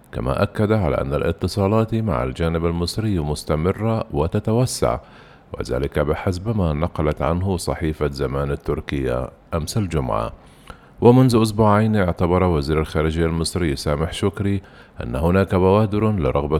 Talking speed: 115 wpm